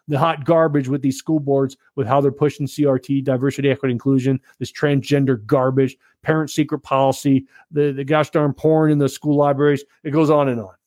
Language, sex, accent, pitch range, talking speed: English, male, American, 135-155 Hz, 195 wpm